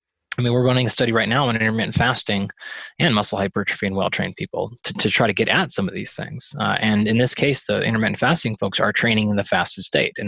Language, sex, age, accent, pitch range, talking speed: English, male, 20-39, American, 110-140 Hz, 250 wpm